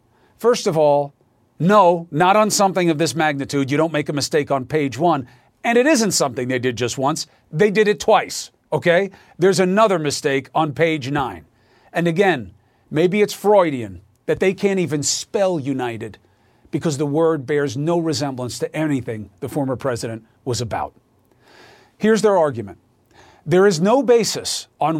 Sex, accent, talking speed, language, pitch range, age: male, American, 165 wpm, English, 125-195 Hz, 40-59